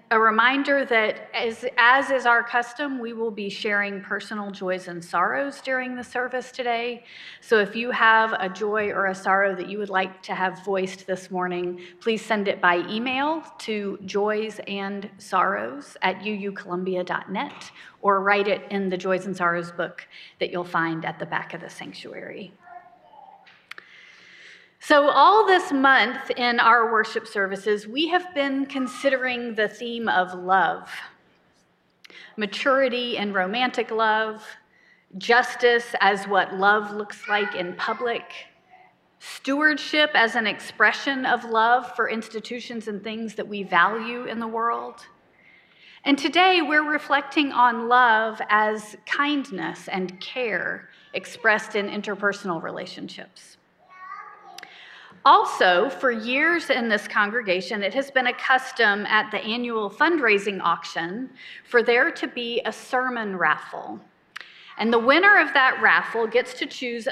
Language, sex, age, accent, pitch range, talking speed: English, female, 40-59, American, 200-260 Hz, 140 wpm